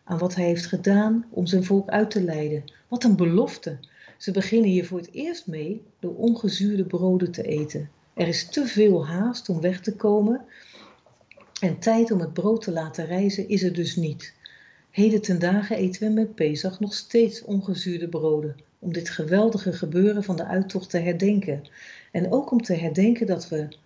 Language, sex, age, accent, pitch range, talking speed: Dutch, female, 50-69, Dutch, 165-215 Hz, 185 wpm